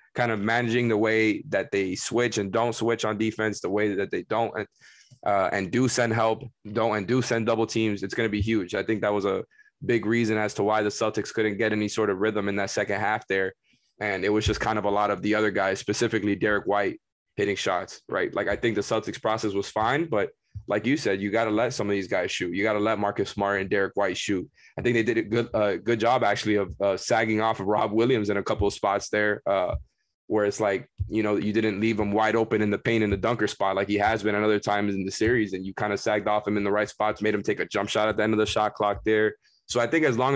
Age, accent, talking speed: 20-39, American, 280 wpm